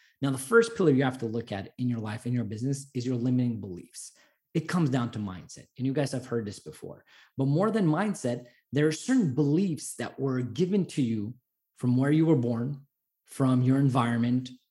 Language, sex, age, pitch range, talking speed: English, male, 30-49, 130-190 Hz, 210 wpm